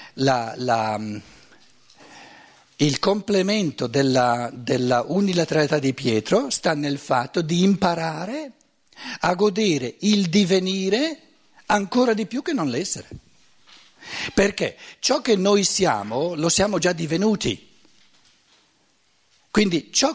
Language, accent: Italian, native